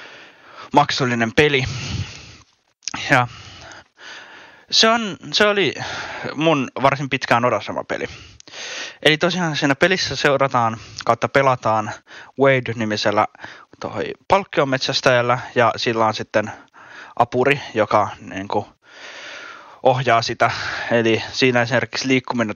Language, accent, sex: Finnish, native, male